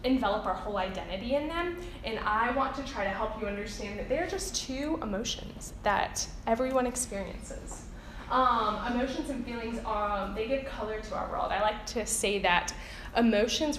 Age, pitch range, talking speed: 10-29, 205-260 Hz, 170 wpm